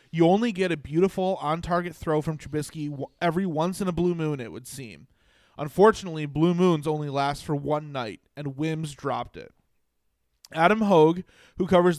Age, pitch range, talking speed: 20-39, 145-170 Hz, 175 wpm